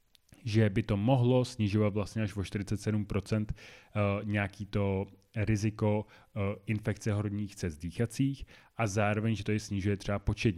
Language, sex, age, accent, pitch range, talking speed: Czech, male, 30-49, native, 100-110 Hz, 135 wpm